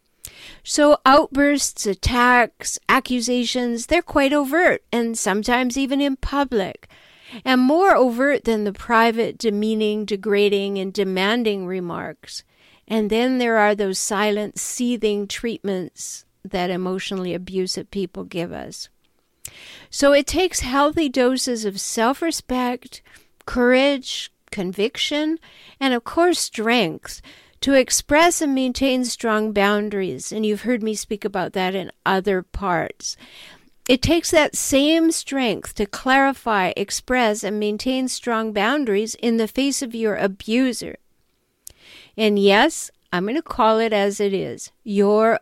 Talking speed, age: 125 wpm, 50-69